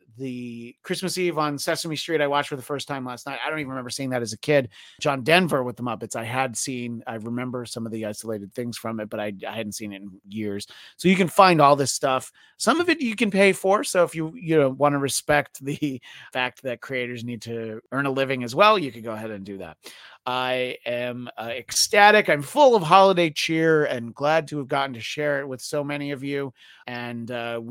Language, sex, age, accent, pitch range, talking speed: English, male, 30-49, American, 125-165 Hz, 245 wpm